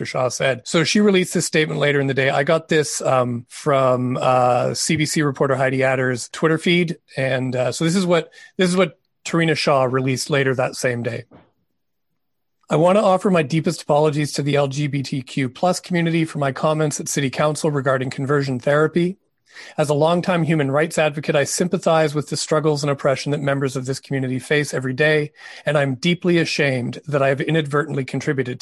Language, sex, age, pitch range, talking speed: English, male, 40-59, 140-165 Hz, 190 wpm